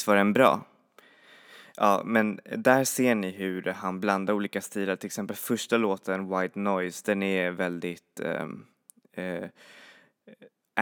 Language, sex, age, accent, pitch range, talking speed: Swedish, male, 20-39, native, 95-105 Hz, 130 wpm